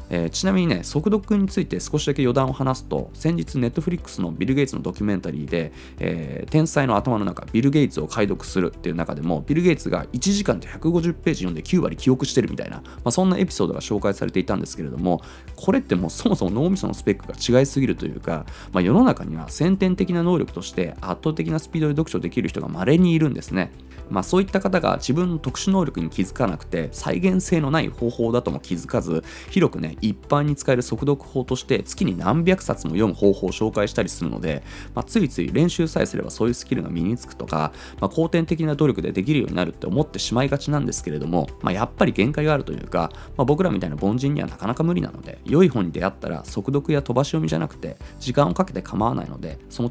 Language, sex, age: Japanese, male, 20-39